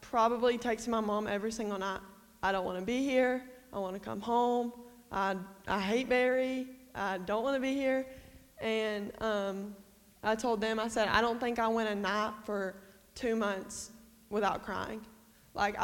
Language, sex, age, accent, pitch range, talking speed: English, female, 20-39, American, 215-270 Hz, 180 wpm